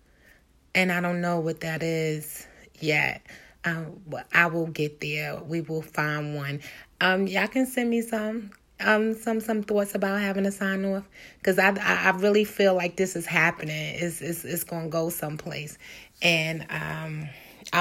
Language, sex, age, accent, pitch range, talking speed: English, female, 30-49, American, 165-215 Hz, 170 wpm